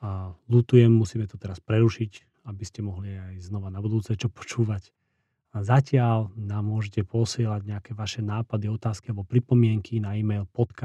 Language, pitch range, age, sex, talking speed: Slovak, 100-115 Hz, 40-59, male, 155 wpm